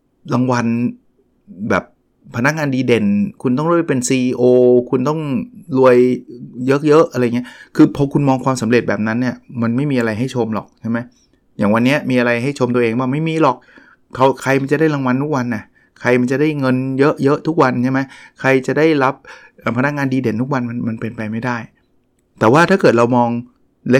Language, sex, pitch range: Thai, male, 115-135 Hz